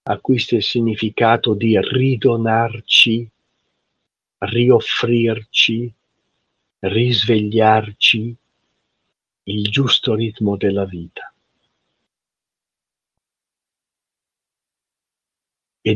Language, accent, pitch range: Italian, native, 100-120 Hz